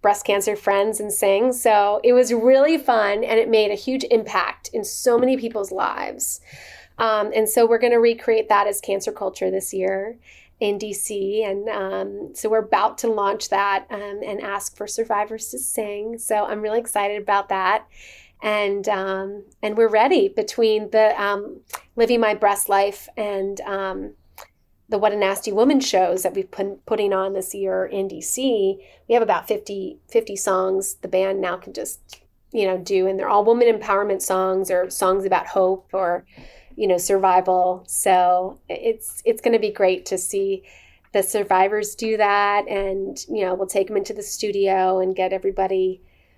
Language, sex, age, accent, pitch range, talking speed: English, female, 30-49, American, 190-225 Hz, 180 wpm